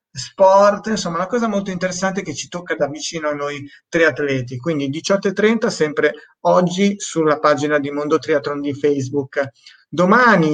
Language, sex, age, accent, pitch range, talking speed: Italian, male, 30-49, native, 145-185 Hz, 150 wpm